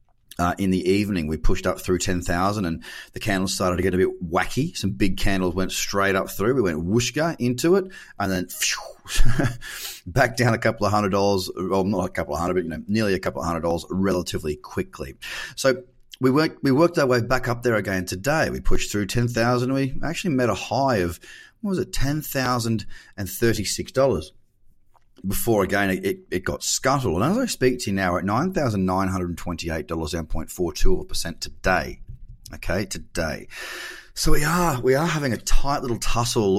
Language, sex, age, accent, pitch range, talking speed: English, male, 30-49, Australian, 95-125 Hz, 205 wpm